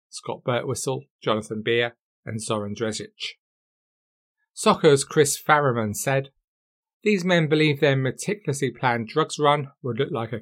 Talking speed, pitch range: 130 wpm, 115-145 Hz